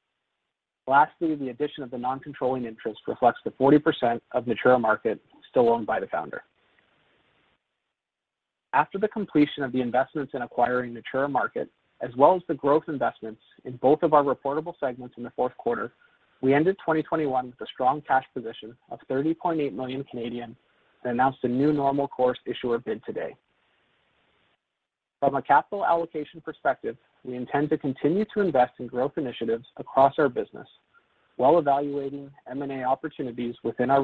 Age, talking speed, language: 40-59, 155 wpm, English